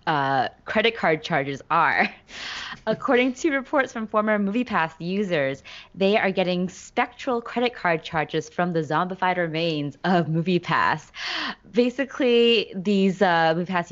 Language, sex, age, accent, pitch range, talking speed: English, female, 20-39, American, 155-195 Hz, 125 wpm